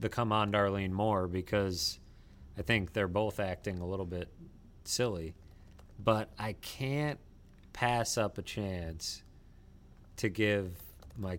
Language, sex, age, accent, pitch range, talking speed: English, male, 30-49, American, 90-105 Hz, 130 wpm